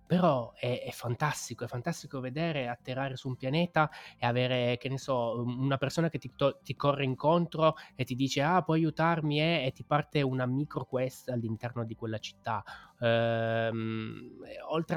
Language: Italian